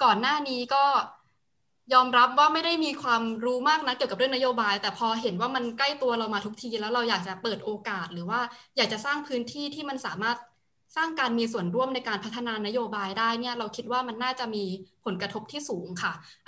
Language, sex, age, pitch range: Thai, female, 20-39, 205-260 Hz